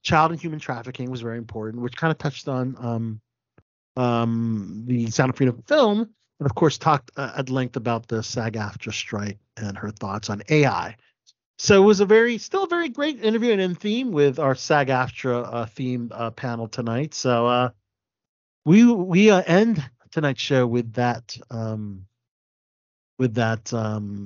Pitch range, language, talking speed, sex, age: 120-175 Hz, English, 175 wpm, male, 40-59